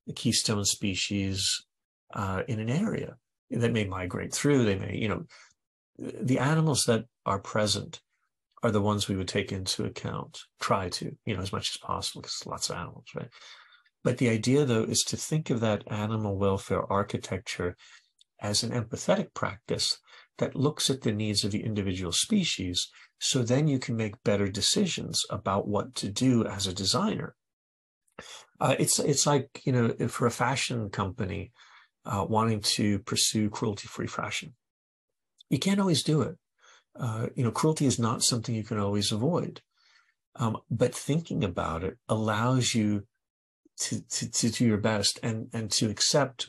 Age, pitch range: 50-69, 100-125 Hz